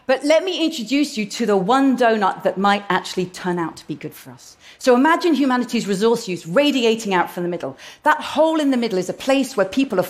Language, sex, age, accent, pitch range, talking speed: Russian, female, 40-59, British, 195-270 Hz, 240 wpm